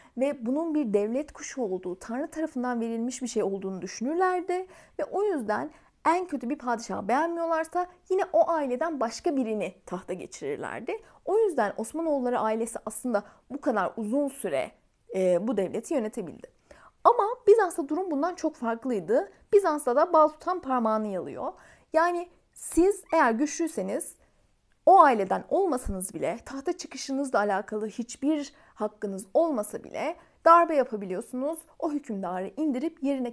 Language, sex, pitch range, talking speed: Turkish, female, 230-330 Hz, 135 wpm